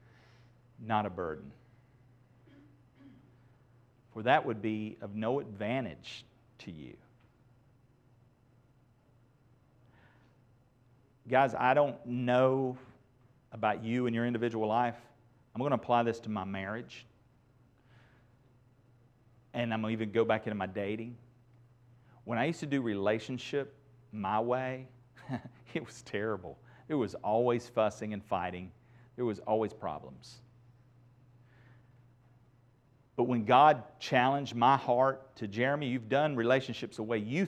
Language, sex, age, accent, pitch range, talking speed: English, male, 40-59, American, 115-125 Hz, 120 wpm